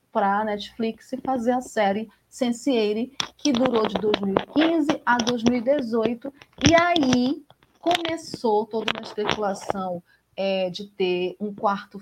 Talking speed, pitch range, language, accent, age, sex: 120 wpm, 185-245 Hz, Portuguese, Brazilian, 40-59, female